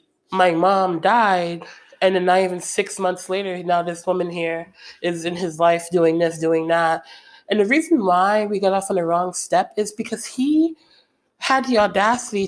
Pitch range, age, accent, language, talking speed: 175-235 Hz, 20-39, American, English, 190 wpm